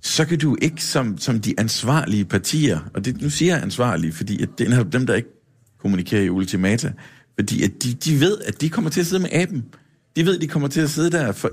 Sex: male